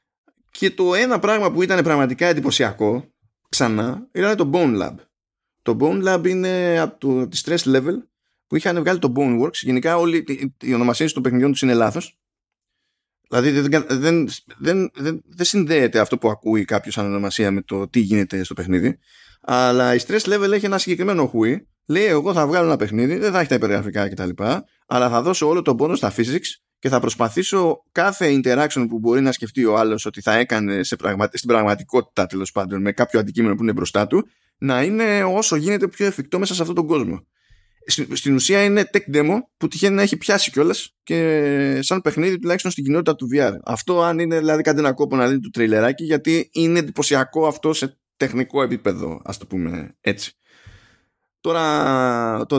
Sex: male